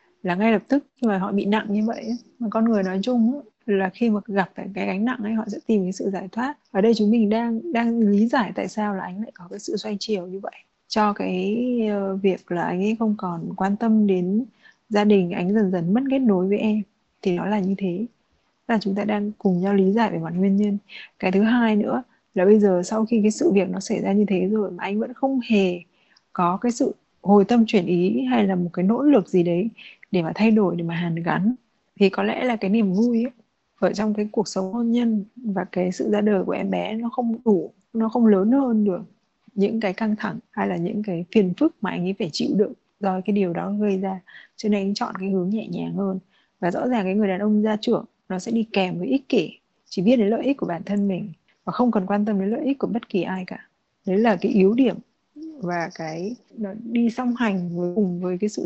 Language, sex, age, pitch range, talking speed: Vietnamese, female, 20-39, 190-225 Hz, 255 wpm